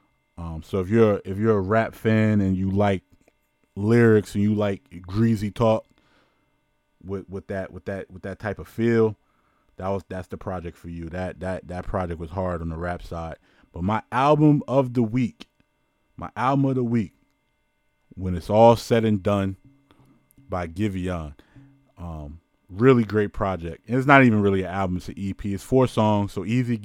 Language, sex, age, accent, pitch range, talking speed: English, male, 30-49, American, 90-110 Hz, 190 wpm